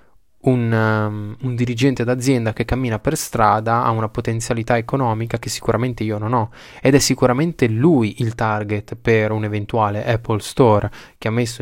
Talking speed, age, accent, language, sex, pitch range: 160 wpm, 20-39, native, Italian, male, 110-130 Hz